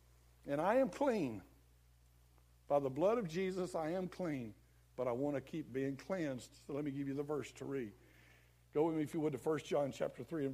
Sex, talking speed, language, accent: male, 230 wpm, English, American